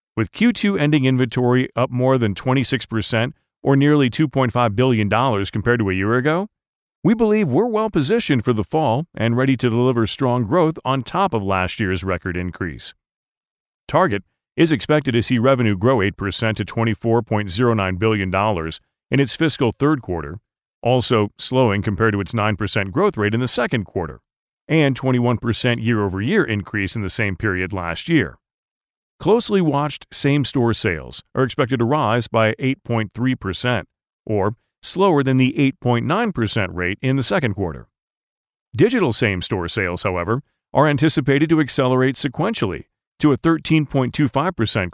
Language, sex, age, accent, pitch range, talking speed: English, male, 40-59, American, 105-135 Hz, 150 wpm